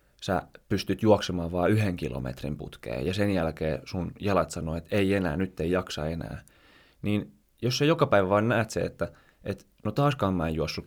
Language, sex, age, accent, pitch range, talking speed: Finnish, male, 20-39, native, 85-110 Hz, 195 wpm